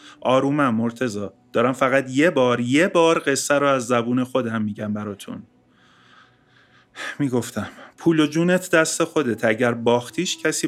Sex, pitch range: male, 125-145 Hz